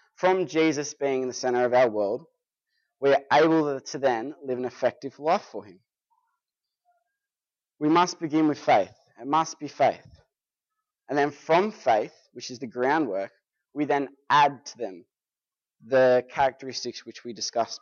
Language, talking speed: English, 160 wpm